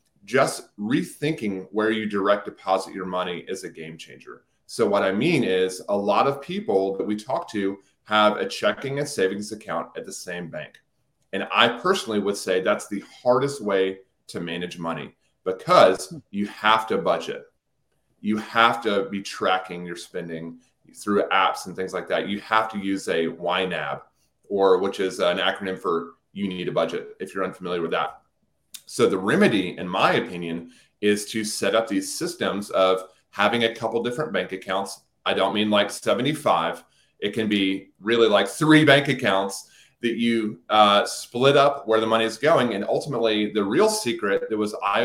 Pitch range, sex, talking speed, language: 95-120 Hz, male, 180 wpm, English